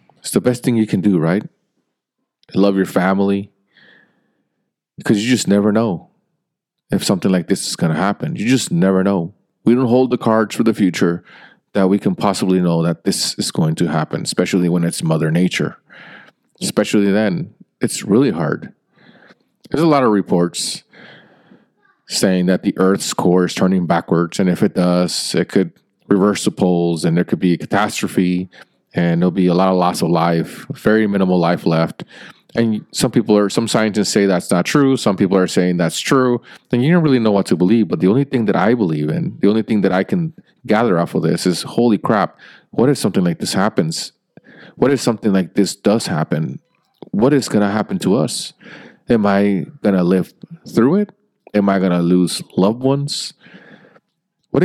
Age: 30-49